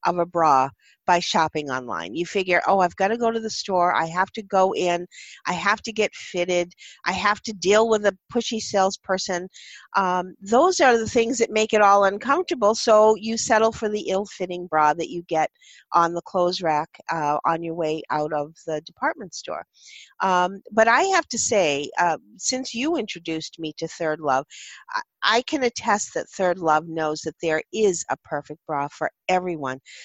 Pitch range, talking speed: 165-220 Hz, 195 wpm